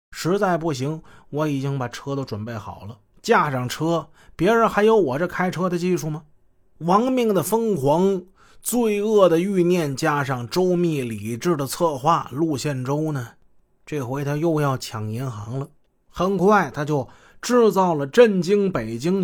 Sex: male